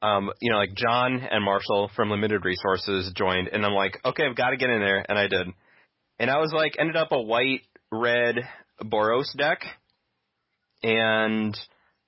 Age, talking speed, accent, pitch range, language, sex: 30-49, 180 wpm, American, 100-125 Hz, English, male